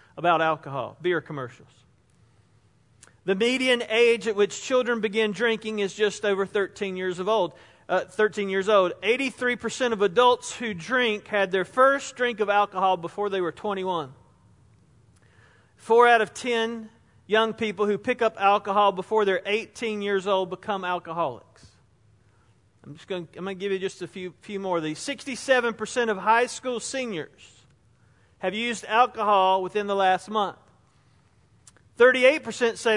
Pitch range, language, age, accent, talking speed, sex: 170-225 Hz, English, 40-59, American, 155 wpm, male